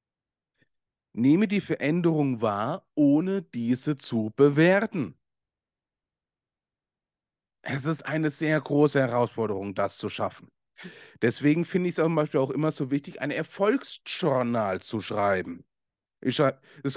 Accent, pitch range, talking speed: German, 130-190 Hz, 125 wpm